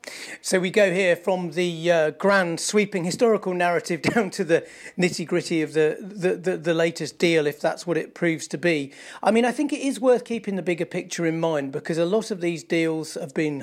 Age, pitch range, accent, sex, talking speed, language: 40-59, 160-195 Hz, British, male, 225 wpm, English